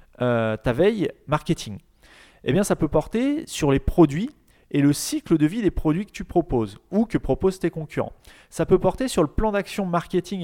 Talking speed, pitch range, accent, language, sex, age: 200 wpm, 130-195 Hz, French, French, male, 30-49